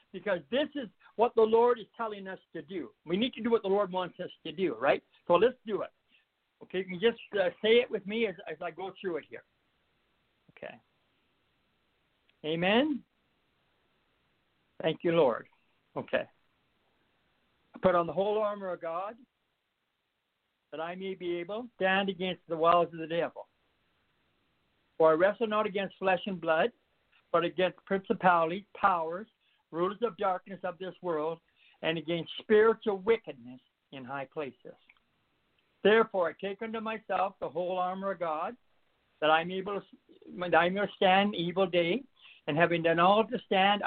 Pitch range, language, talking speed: 170-215 Hz, English, 170 wpm